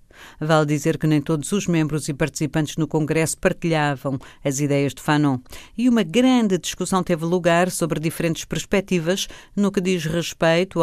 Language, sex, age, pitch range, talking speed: Portuguese, female, 50-69, 150-185 Hz, 160 wpm